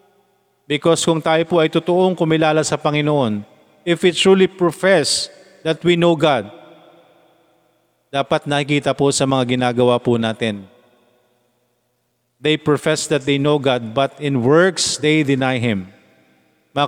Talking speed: 135 wpm